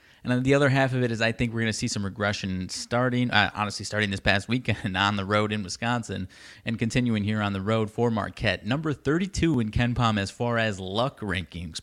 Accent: American